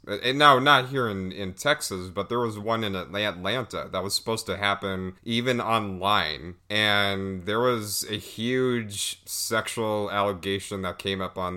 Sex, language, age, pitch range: male, English, 30-49, 95-120 Hz